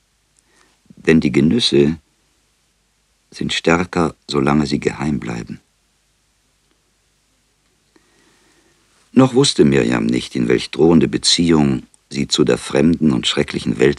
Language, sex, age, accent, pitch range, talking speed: German, male, 50-69, German, 70-85 Hz, 105 wpm